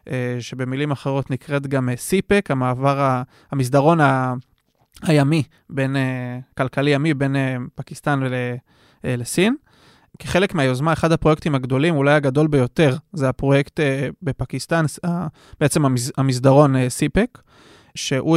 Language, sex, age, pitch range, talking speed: Hebrew, male, 20-39, 130-160 Hz, 100 wpm